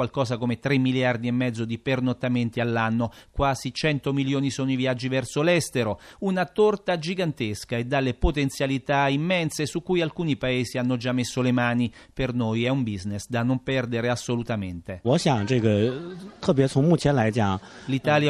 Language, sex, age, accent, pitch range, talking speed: Italian, male, 40-59, native, 120-145 Hz, 140 wpm